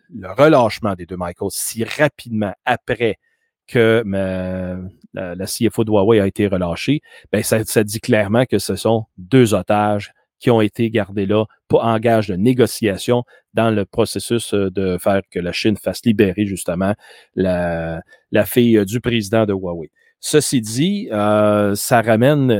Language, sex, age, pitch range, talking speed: French, male, 30-49, 100-130 Hz, 160 wpm